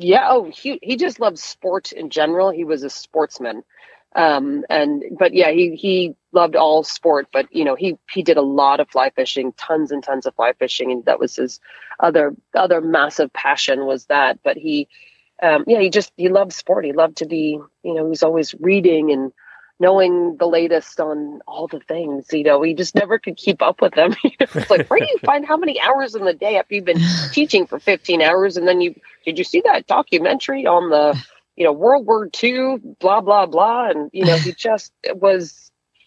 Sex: female